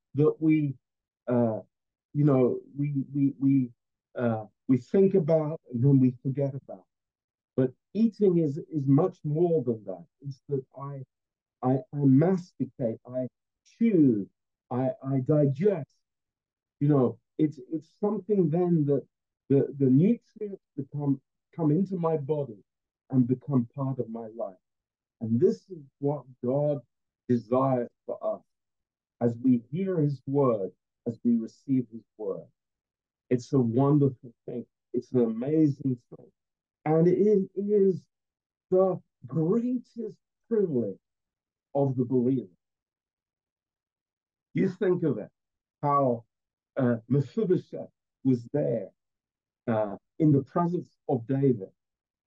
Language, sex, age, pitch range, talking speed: Romanian, male, 50-69, 125-160 Hz, 125 wpm